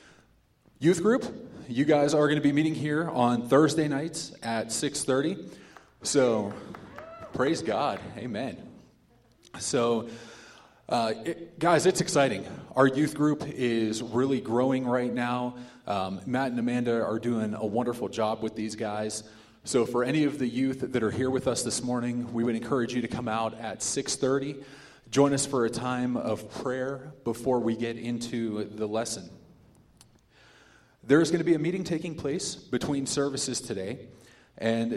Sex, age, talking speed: male, 30-49, 155 wpm